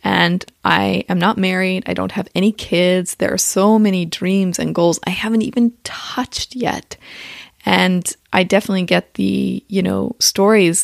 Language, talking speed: English, 165 wpm